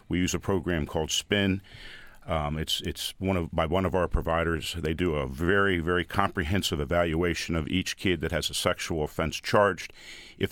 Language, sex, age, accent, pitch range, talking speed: English, male, 50-69, American, 80-100 Hz, 190 wpm